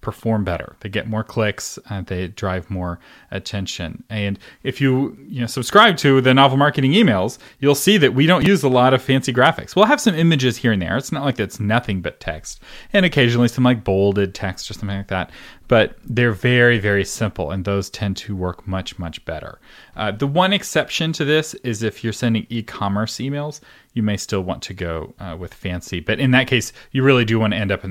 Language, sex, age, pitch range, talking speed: English, male, 30-49, 100-130 Hz, 220 wpm